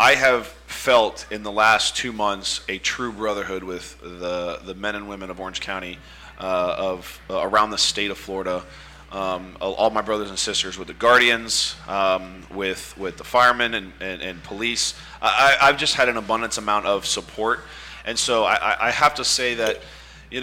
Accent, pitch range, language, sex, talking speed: American, 95-120 Hz, English, male, 190 wpm